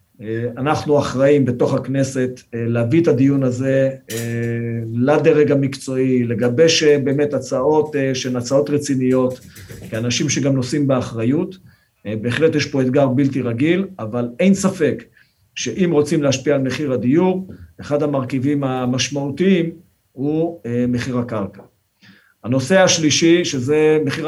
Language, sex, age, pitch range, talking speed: Hebrew, male, 50-69, 125-155 Hz, 110 wpm